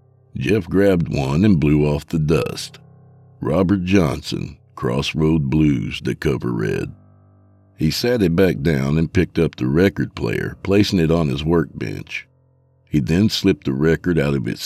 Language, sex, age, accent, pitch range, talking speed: English, male, 60-79, American, 75-110 Hz, 160 wpm